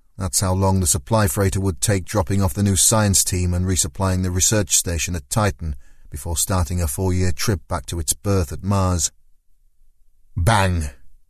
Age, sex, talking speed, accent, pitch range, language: 30-49, male, 180 wpm, British, 85-105 Hz, English